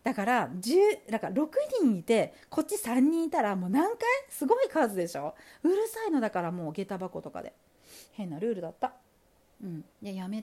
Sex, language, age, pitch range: female, Japanese, 40-59, 175-280 Hz